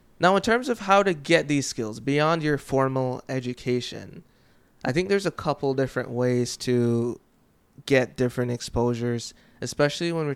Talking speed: 155 wpm